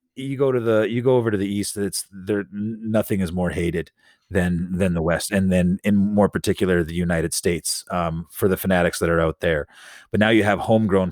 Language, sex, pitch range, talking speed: English, male, 95-110 Hz, 220 wpm